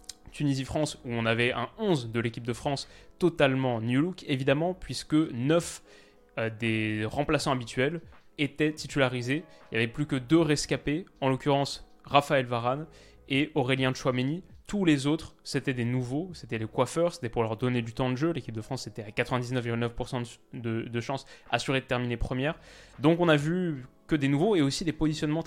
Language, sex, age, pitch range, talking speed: French, male, 20-39, 125-150 Hz, 180 wpm